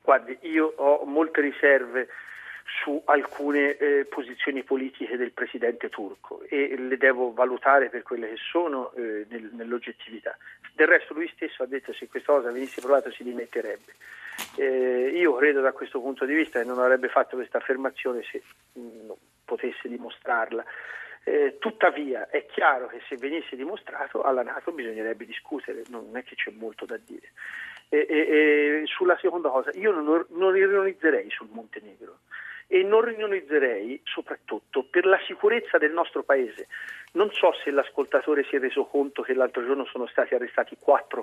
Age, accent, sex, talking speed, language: 40-59, native, male, 160 wpm, Italian